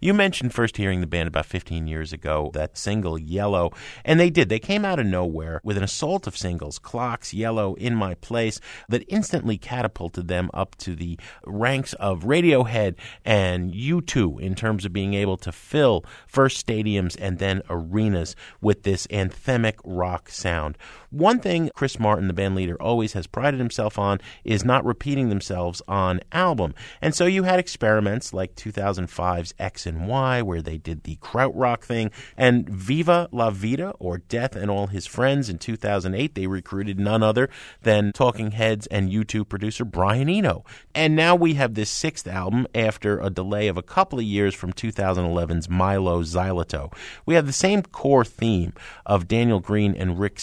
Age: 30-49